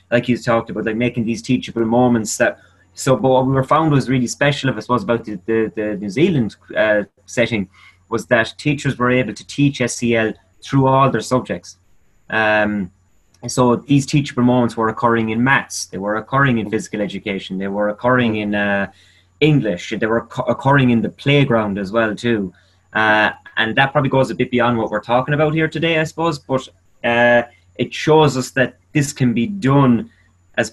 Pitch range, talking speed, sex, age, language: 105-125 Hz, 190 wpm, male, 20-39, English